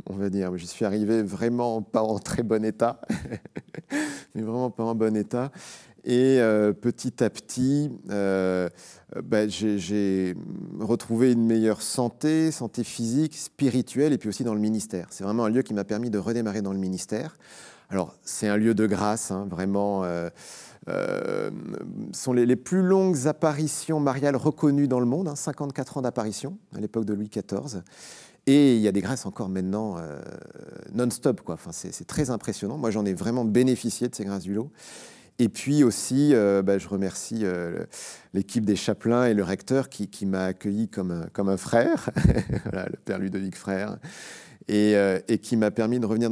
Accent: French